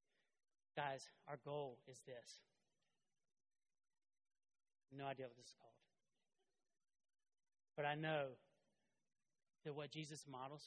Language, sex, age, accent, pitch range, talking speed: English, male, 30-49, American, 150-205 Hz, 100 wpm